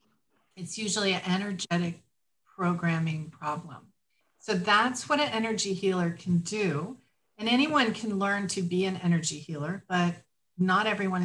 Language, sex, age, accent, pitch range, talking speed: English, female, 40-59, American, 165-200 Hz, 140 wpm